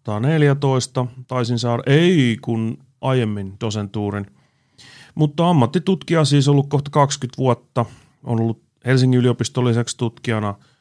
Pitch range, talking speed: 105-135 Hz, 115 wpm